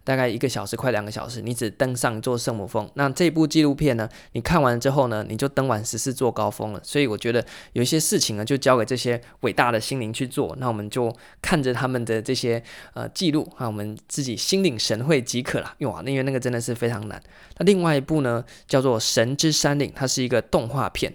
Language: Chinese